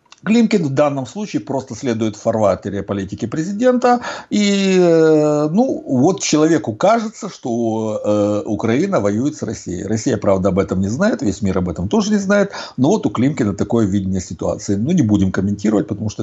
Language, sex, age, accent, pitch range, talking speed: Russian, male, 60-79, native, 100-160 Hz, 170 wpm